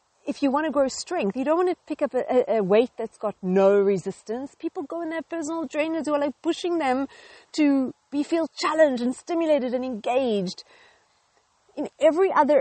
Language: English